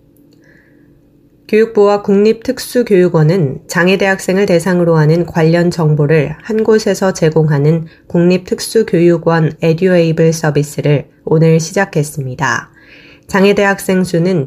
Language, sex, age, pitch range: Korean, female, 20-39, 155-185 Hz